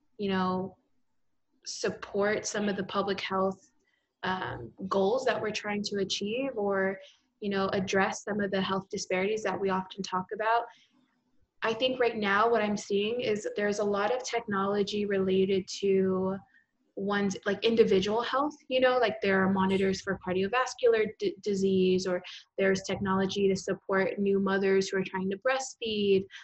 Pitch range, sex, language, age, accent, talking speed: 190-215 Hz, female, English, 20-39, American, 155 wpm